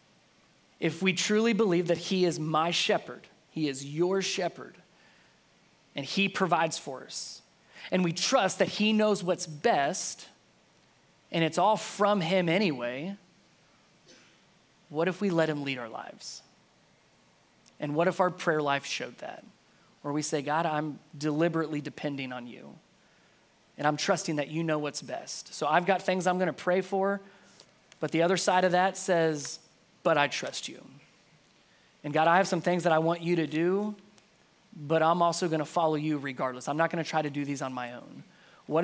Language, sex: English, male